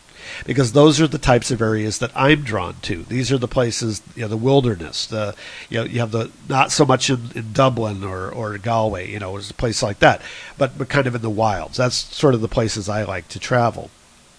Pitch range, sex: 110-145 Hz, male